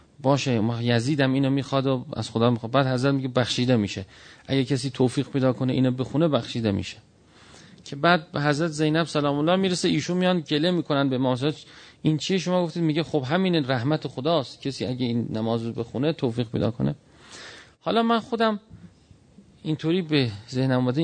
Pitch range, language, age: 115-155 Hz, Persian, 40-59